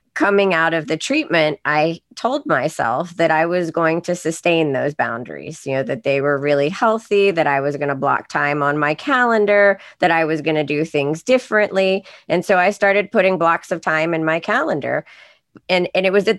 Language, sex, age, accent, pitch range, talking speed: English, female, 30-49, American, 160-210 Hz, 210 wpm